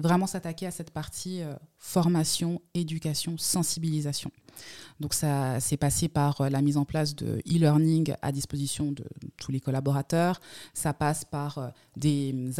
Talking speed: 150 wpm